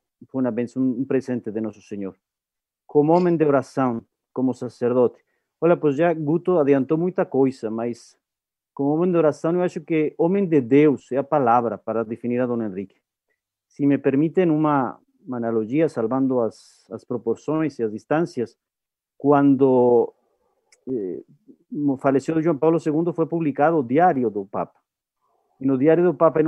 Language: Portuguese